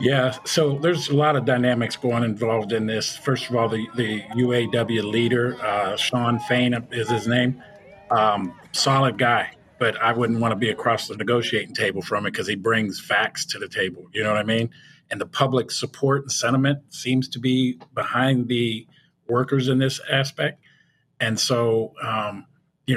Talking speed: 185 wpm